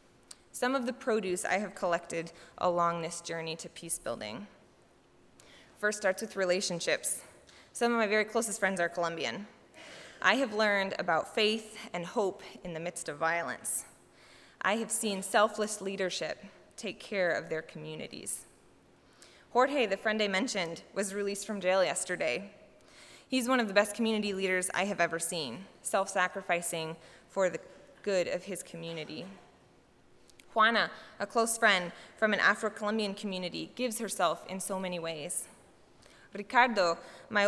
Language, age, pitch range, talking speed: English, 20-39, 175-220 Hz, 145 wpm